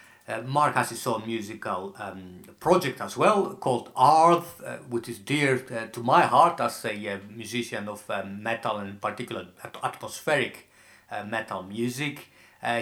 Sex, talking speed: male, 170 wpm